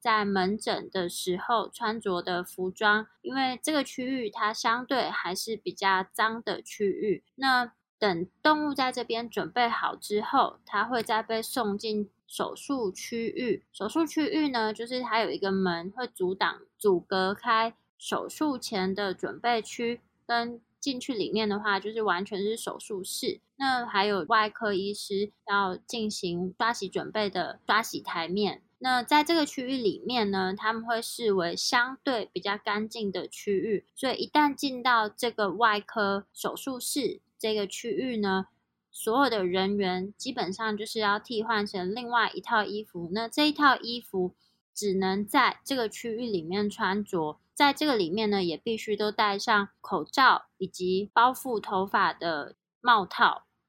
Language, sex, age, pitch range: Chinese, female, 20-39, 195-240 Hz